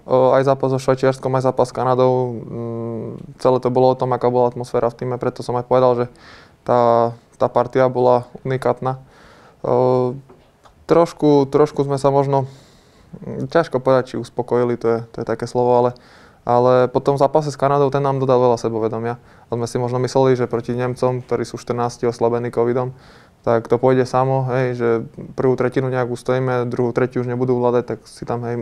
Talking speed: 185 wpm